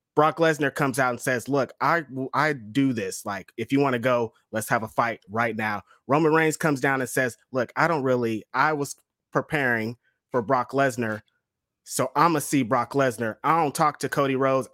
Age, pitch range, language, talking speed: 20-39, 135-160 Hz, English, 210 wpm